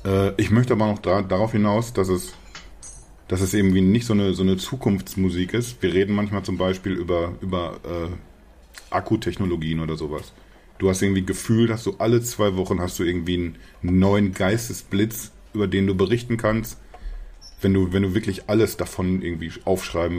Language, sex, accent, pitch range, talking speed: German, male, German, 90-105 Hz, 175 wpm